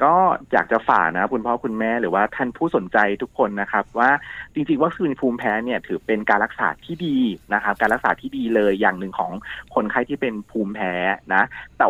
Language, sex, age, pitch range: Thai, male, 30-49, 105-130 Hz